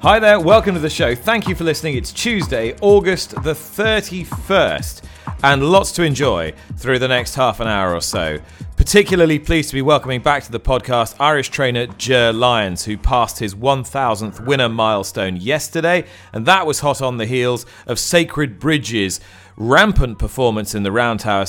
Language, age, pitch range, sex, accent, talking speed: English, 40-59, 110-145 Hz, male, British, 175 wpm